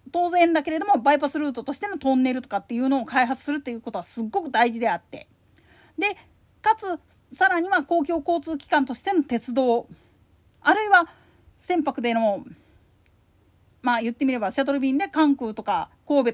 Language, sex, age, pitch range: Japanese, female, 40-59, 250-360 Hz